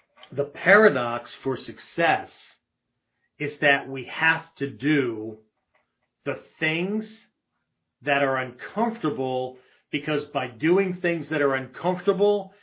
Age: 40-59